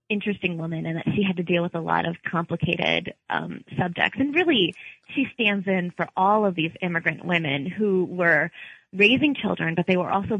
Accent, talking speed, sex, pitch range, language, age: American, 195 wpm, female, 165-195 Hz, English, 20-39